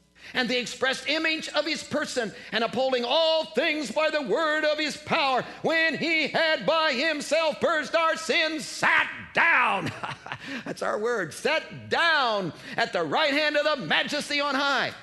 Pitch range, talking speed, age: 180-300 Hz, 165 wpm, 50-69